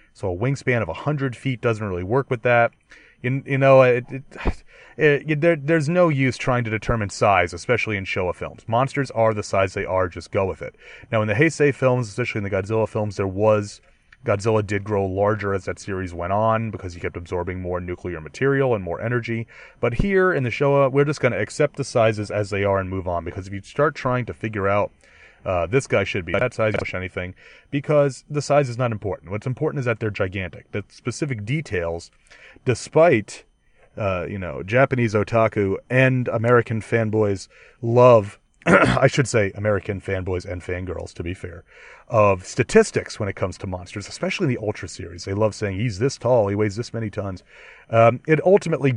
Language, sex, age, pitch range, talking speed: English, male, 30-49, 100-130 Hz, 200 wpm